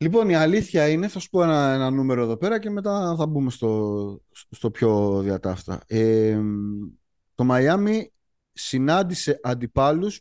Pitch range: 120-175 Hz